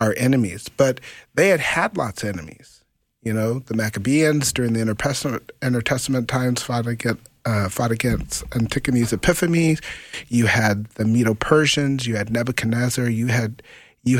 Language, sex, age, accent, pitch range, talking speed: English, male, 40-59, American, 110-125 Hz, 155 wpm